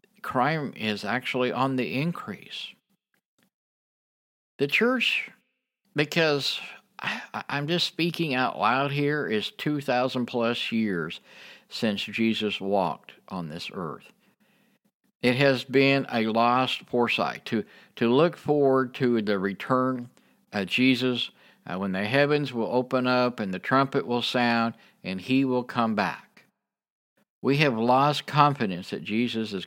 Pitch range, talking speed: 115-140 Hz, 130 wpm